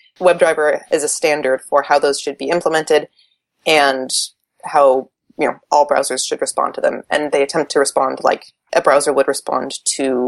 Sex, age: female, 20-39